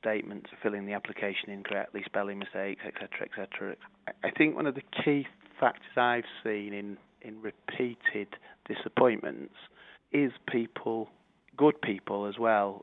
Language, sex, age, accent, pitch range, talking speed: English, male, 30-49, British, 100-115 Hz, 140 wpm